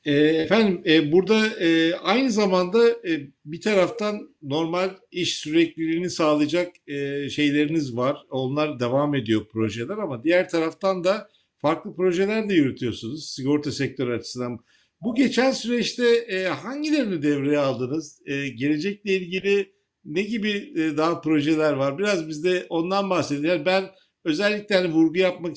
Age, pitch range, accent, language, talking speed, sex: 60-79, 155-190 Hz, native, Turkish, 115 wpm, male